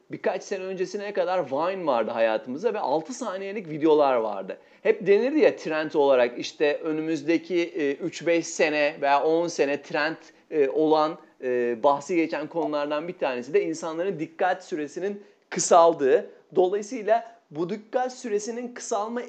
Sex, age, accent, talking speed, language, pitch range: male, 40-59, native, 130 wpm, Turkish, 165-240 Hz